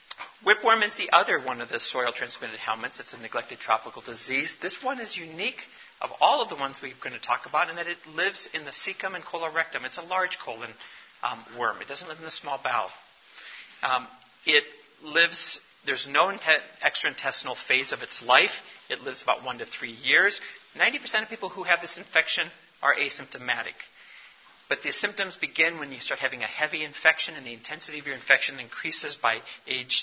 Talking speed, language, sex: 200 wpm, English, male